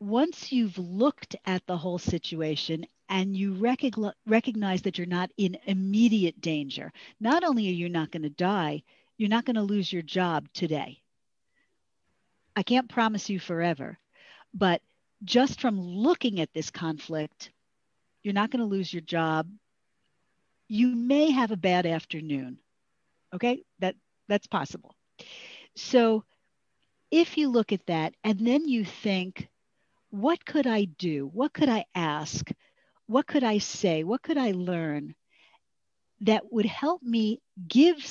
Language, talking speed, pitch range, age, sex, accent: English, 145 wpm, 180-235 Hz, 50-69, female, American